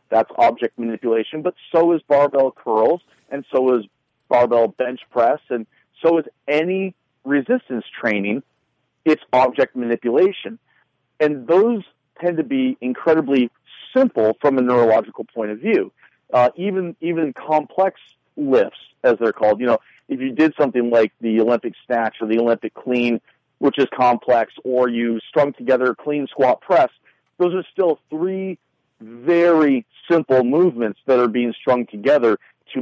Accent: American